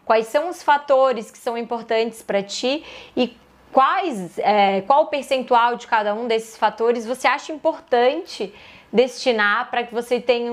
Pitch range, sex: 205-250 Hz, female